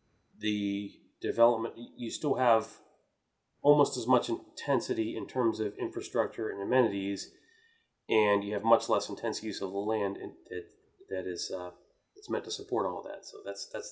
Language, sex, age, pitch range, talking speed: English, male, 30-49, 100-125 Hz, 170 wpm